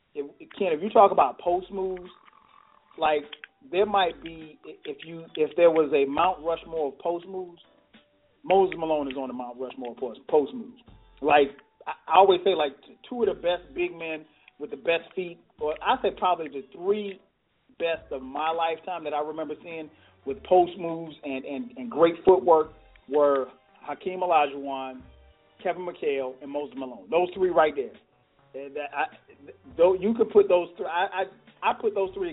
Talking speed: 180 wpm